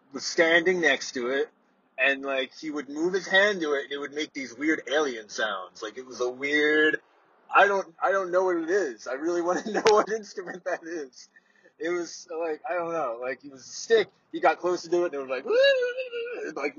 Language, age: English, 20-39